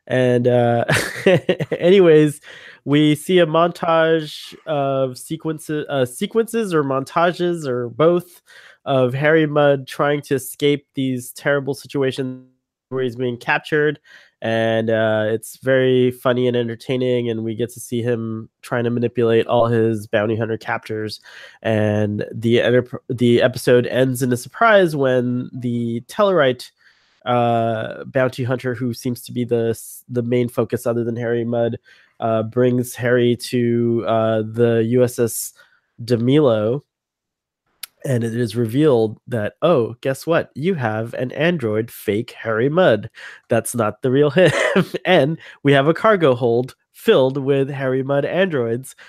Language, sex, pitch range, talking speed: English, male, 120-145 Hz, 140 wpm